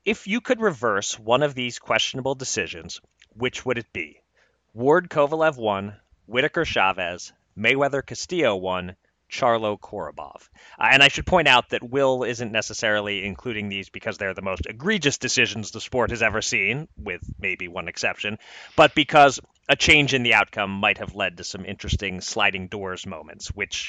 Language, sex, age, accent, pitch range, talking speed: English, male, 30-49, American, 100-130 Hz, 170 wpm